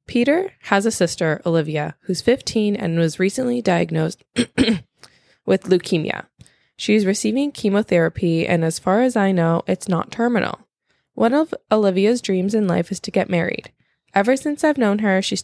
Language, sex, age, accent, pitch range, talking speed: English, female, 10-29, American, 175-225 Hz, 160 wpm